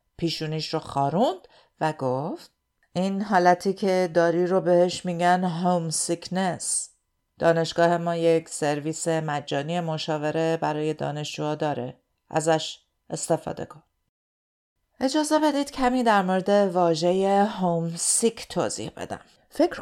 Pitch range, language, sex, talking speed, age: 160-210 Hz, Persian, female, 110 wpm, 50-69